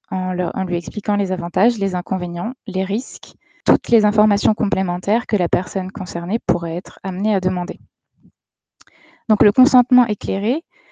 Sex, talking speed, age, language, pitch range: female, 150 wpm, 20-39, French, 195-235 Hz